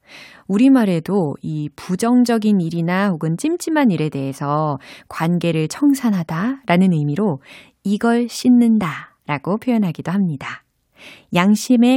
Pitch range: 160-245 Hz